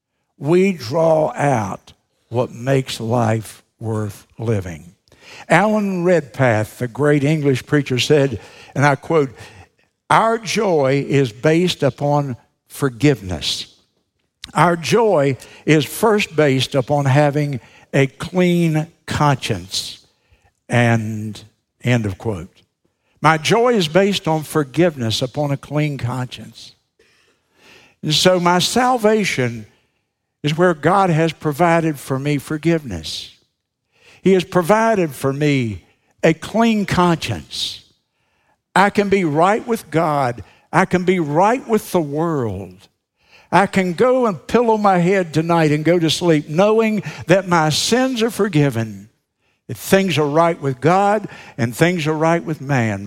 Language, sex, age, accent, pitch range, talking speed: English, male, 60-79, American, 125-180 Hz, 125 wpm